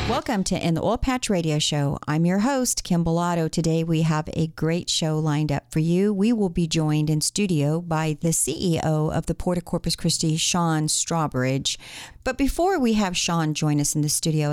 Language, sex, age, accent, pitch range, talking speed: English, female, 40-59, American, 145-185 Hz, 205 wpm